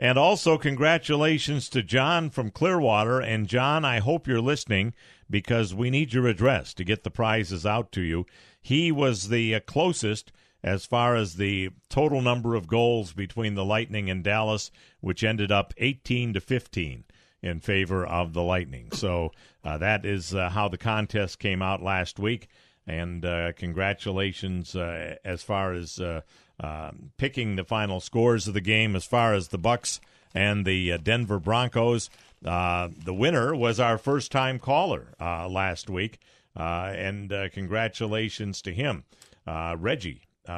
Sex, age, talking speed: male, 50-69, 160 wpm